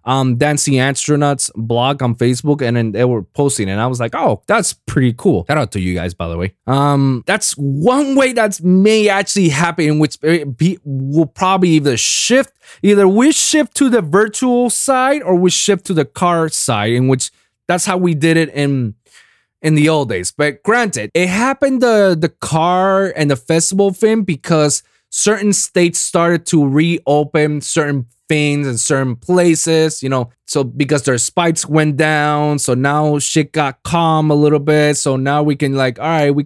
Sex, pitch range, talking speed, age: male, 130-190 Hz, 190 wpm, 20-39